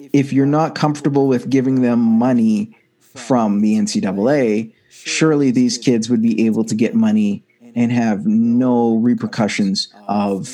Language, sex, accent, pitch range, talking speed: English, male, American, 120-155 Hz, 140 wpm